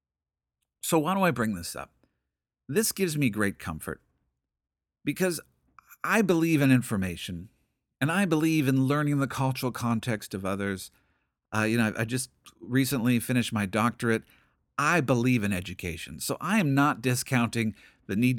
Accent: American